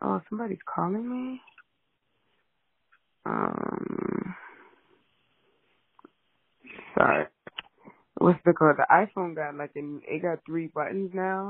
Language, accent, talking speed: English, American, 100 wpm